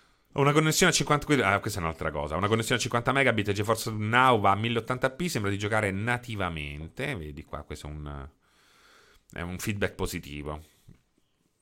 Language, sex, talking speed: Italian, male, 165 wpm